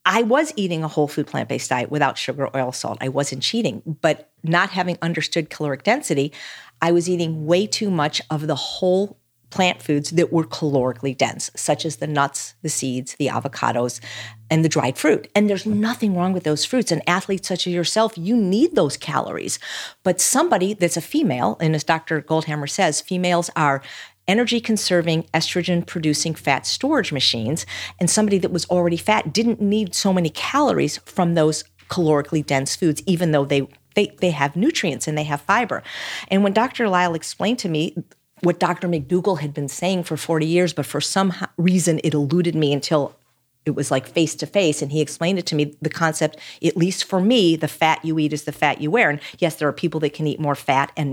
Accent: American